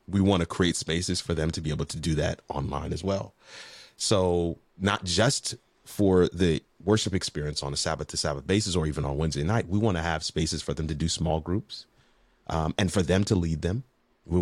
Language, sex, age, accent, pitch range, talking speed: English, male, 30-49, American, 85-110 Hz, 220 wpm